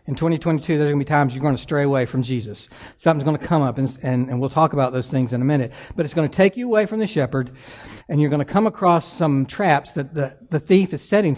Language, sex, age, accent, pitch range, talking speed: English, male, 60-79, American, 135-180 Hz, 285 wpm